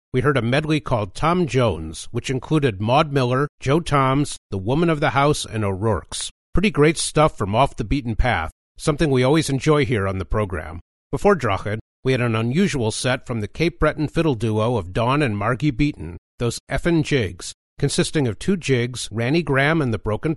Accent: American